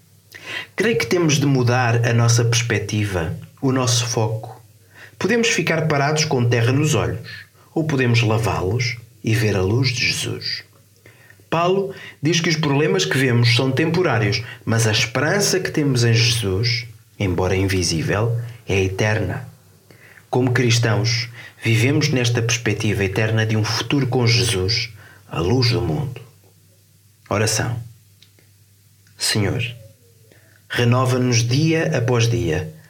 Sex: male